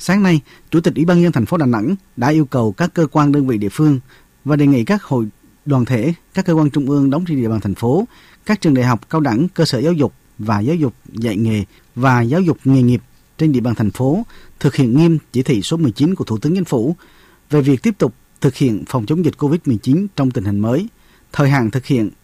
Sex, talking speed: male, 255 wpm